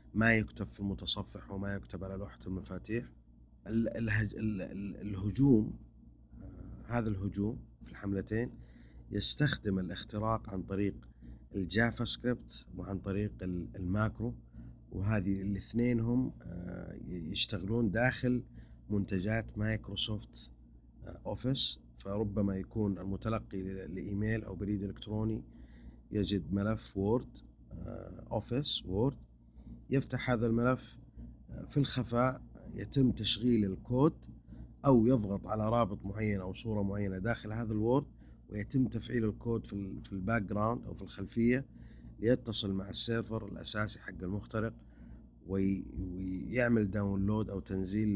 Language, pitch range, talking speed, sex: Arabic, 95-115 Hz, 100 wpm, male